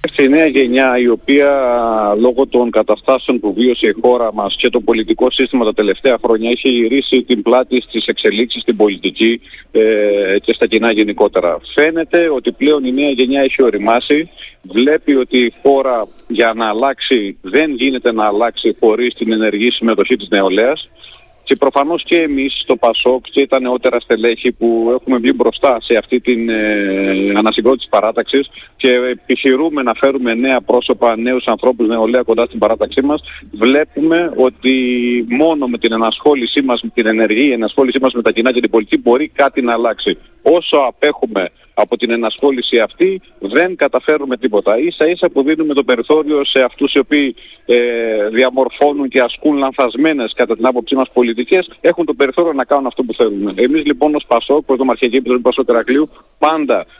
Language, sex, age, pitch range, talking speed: Greek, male, 40-59, 115-140 Hz, 165 wpm